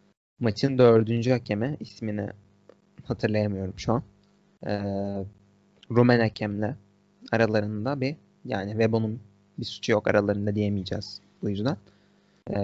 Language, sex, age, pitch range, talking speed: Turkish, male, 30-49, 100-120 Hz, 105 wpm